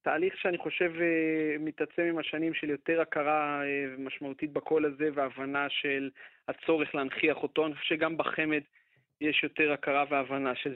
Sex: male